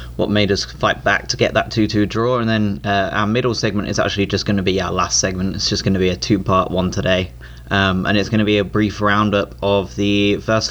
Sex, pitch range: male, 95-110 Hz